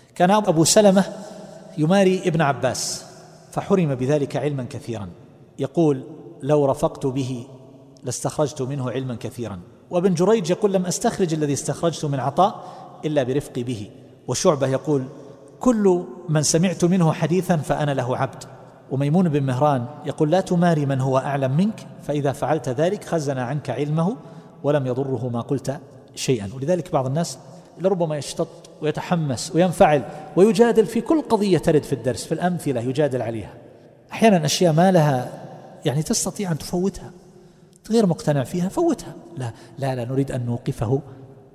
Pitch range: 130-175 Hz